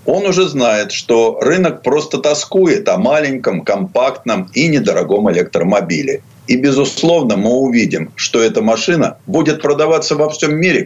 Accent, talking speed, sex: native, 140 wpm, male